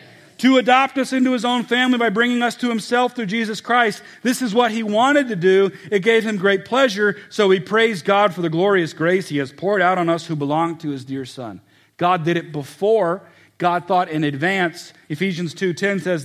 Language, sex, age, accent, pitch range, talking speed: English, male, 40-59, American, 185-240 Hz, 215 wpm